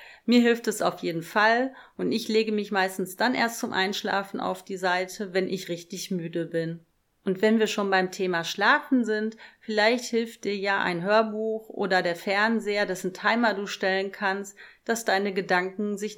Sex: female